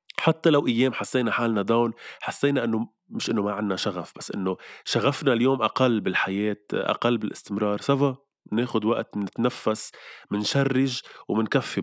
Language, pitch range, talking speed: Arabic, 110-145 Hz, 135 wpm